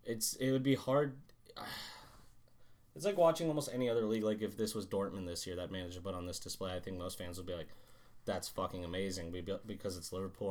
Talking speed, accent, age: 225 wpm, American, 20-39